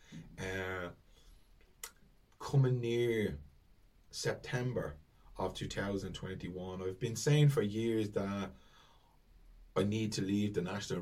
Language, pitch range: English, 95-115 Hz